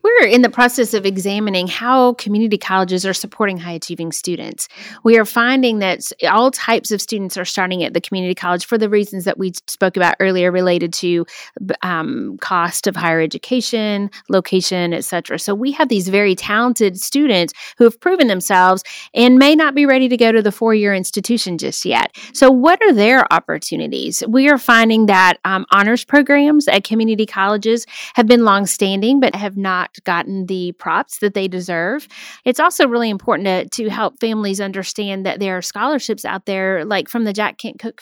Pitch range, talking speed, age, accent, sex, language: 190-245 Hz, 185 wpm, 30-49, American, female, English